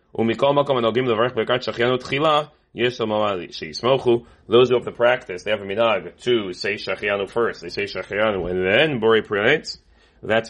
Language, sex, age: English, male, 30-49